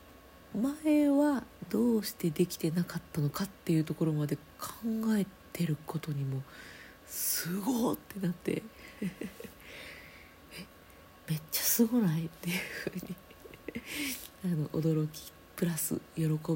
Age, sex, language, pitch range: 40-59, female, Japanese, 145-190 Hz